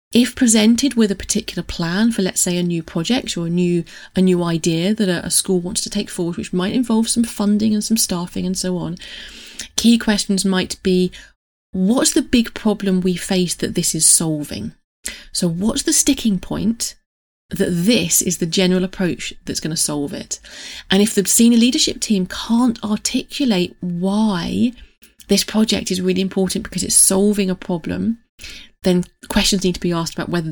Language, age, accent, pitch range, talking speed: English, 30-49, British, 180-220 Hz, 185 wpm